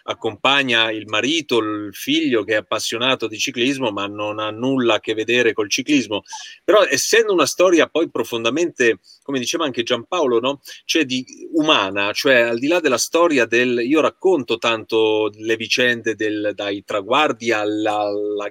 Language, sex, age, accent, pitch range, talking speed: Italian, male, 30-49, native, 110-180 Hz, 160 wpm